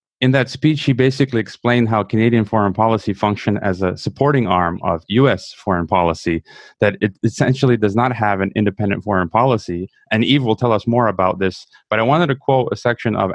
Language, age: English, 30-49